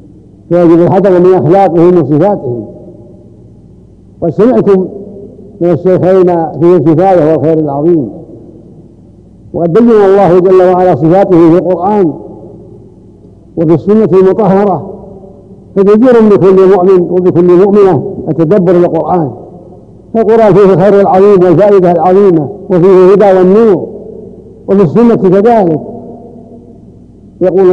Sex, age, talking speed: male, 60-79, 90 wpm